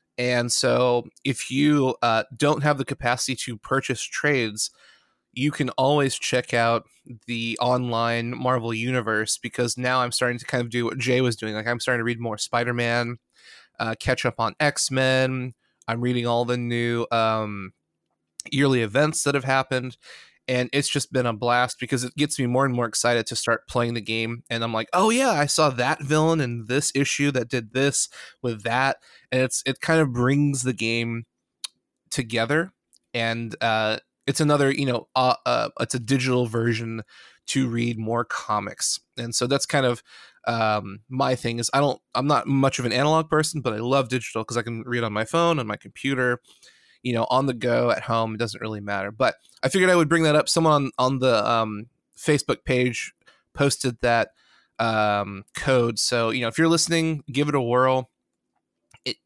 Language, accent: English, American